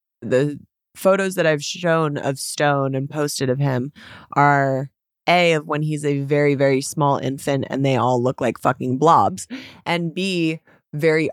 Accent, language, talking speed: American, English, 165 wpm